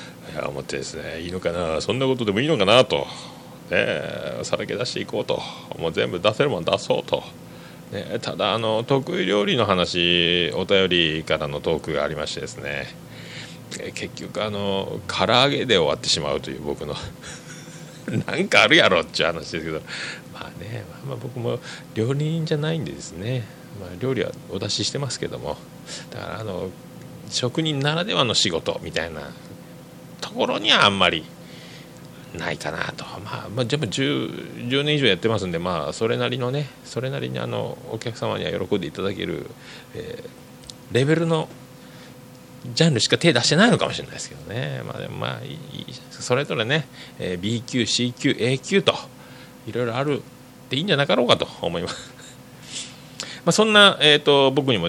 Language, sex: Japanese, male